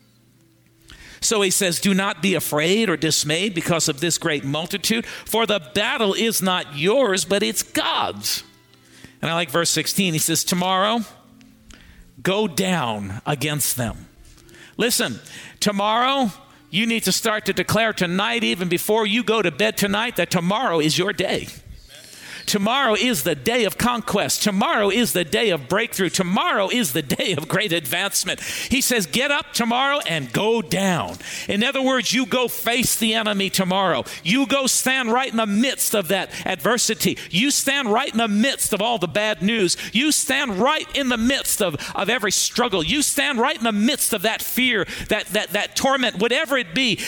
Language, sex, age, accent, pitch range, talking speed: English, male, 50-69, American, 180-235 Hz, 175 wpm